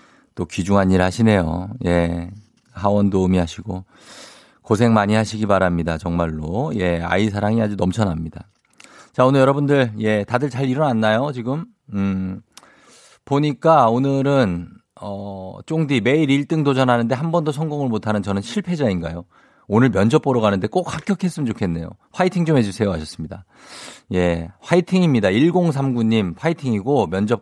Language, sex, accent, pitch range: Korean, male, native, 95-145 Hz